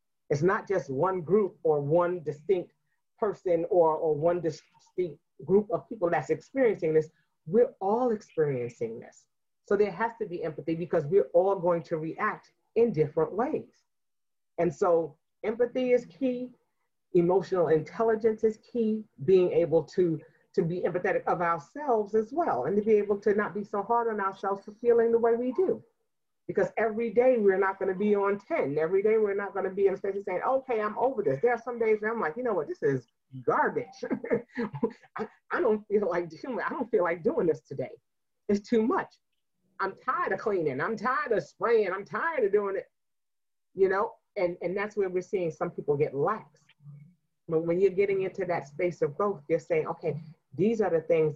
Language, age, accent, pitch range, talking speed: English, 40-59, American, 170-230 Hz, 195 wpm